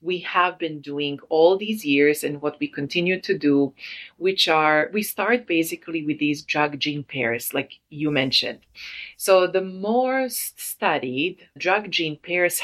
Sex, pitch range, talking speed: female, 140-185 Hz, 155 wpm